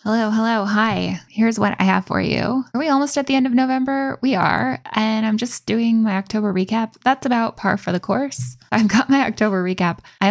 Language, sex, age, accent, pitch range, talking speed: English, female, 10-29, American, 185-230 Hz, 220 wpm